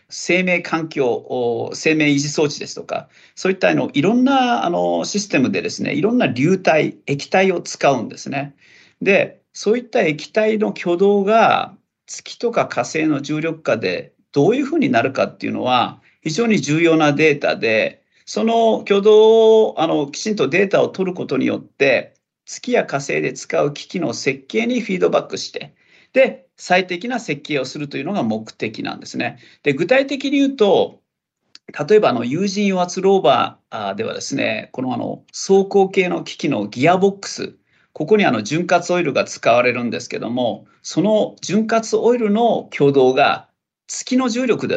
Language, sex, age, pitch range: Japanese, male, 40-59, 145-215 Hz